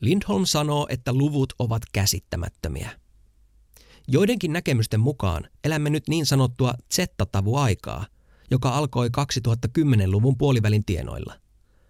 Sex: male